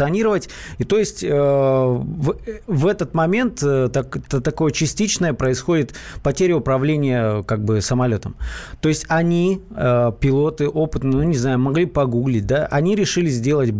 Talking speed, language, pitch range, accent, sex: 120 wpm, Russian, 125-160 Hz, native, male